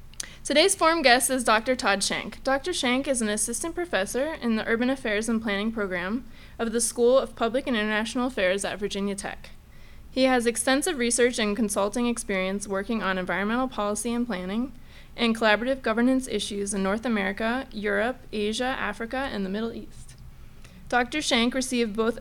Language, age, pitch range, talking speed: English, 20-39, 210-255 Hz, 170 wpm